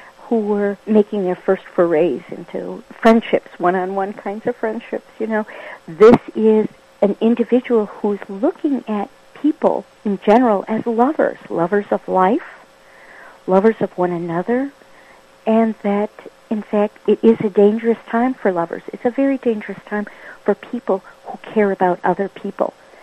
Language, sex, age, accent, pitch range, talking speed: English, female, 50-69, American, 190-225 Hz, 150 wpm